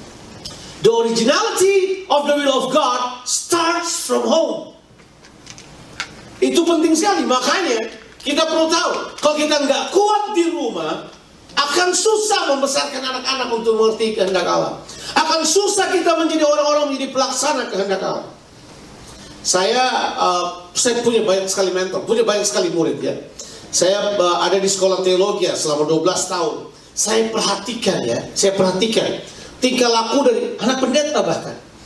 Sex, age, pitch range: male, 40-59, 205-290 Hz